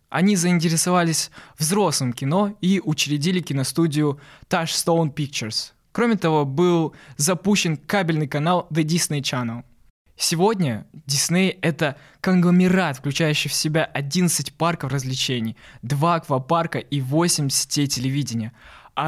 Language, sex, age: Russian, male, 20-39